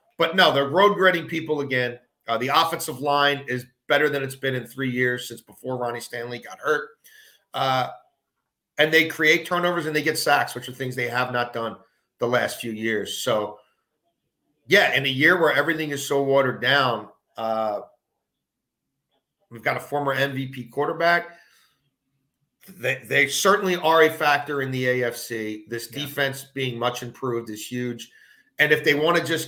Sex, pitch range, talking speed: male, 125-155 Hz, 170 wpm